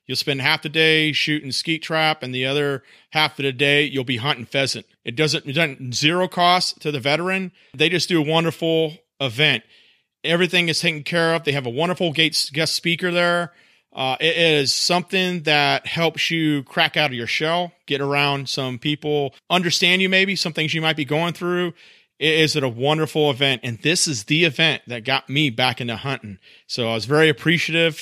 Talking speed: 200 wpm